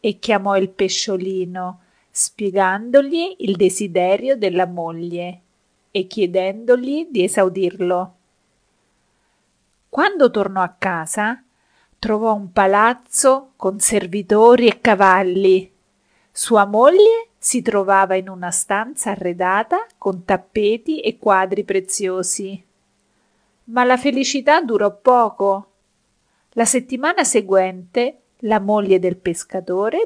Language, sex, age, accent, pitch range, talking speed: Italian, female, 40-59, native, 190-245 Hz, 95 wpm